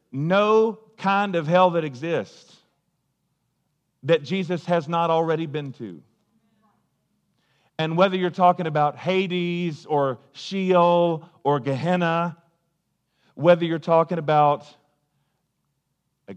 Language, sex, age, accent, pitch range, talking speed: English, male, 40-59, American, 150-180 Hz, 105 wpm